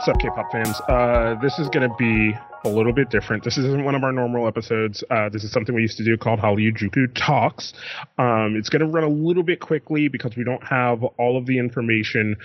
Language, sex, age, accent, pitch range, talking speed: English, male, 20-39, American, 110-130 Hz, 225 wpm